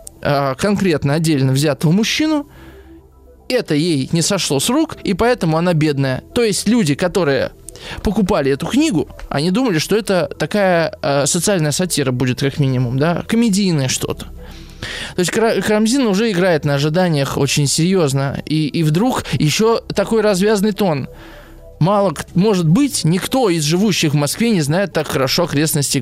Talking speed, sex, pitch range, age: 145 wpm, male, 145-195 Hz, 20-39